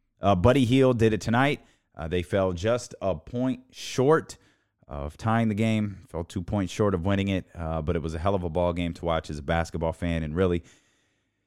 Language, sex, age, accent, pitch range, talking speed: English, male, 30-49, American, 90-115 Hz, 220 wpm